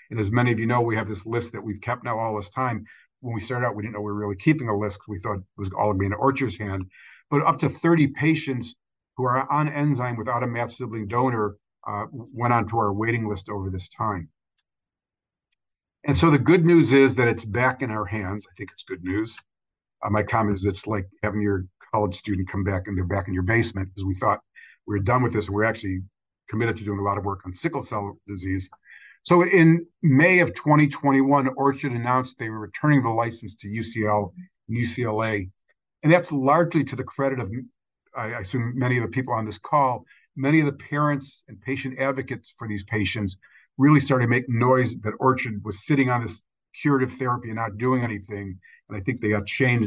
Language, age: English, 50-69